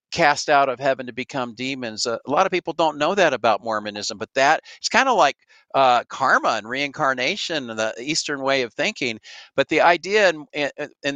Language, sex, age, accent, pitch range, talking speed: English, male, 50-69, American, 130-155 Hz, 195 wpm